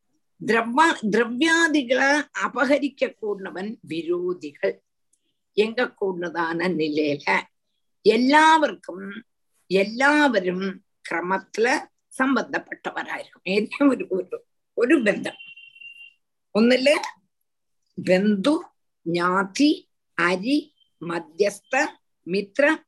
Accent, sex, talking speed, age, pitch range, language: native, female, 50 wpm, 50-69, 190-285 Hz, Tamil